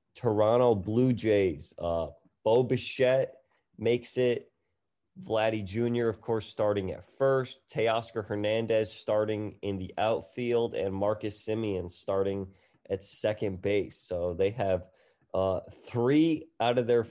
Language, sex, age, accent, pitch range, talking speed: English, male, 20-39, American, 100-125 Hz, 125 wpm